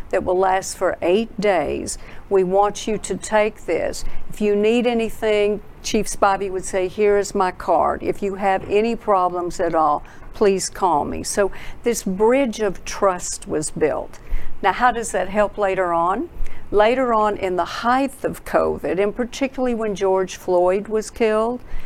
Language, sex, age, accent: English, female, 50-69, American